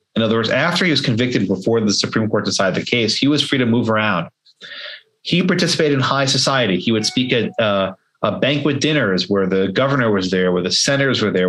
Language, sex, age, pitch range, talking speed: English, male, 30-49, 105-145 Hz, 225 wpm